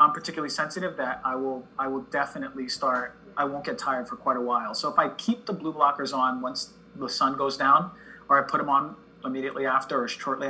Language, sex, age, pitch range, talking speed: English, male, 30-49, 130-185 Hz, 230 wpm